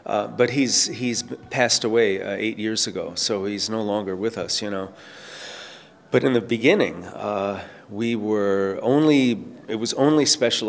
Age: 30-49